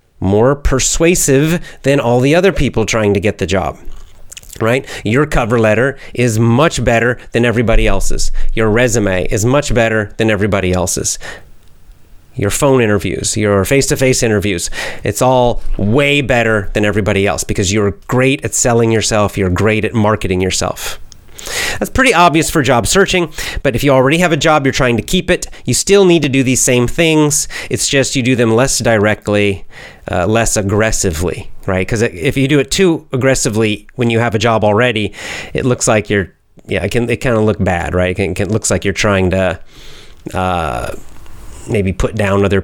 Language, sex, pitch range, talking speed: English, male, 100-135 Hz, 180 wpm